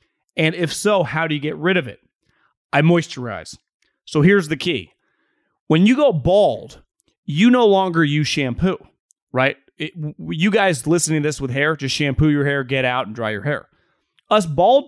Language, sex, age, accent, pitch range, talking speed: English, male, 30-49, American, 130-175 Hz, 185 wpm